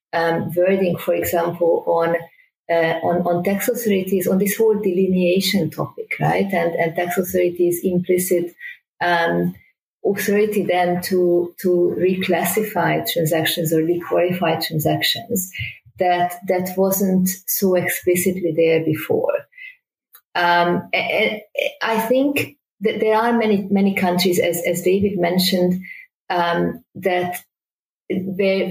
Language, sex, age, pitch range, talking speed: German, female, 30-49, 175-195 Hz, 115 wpm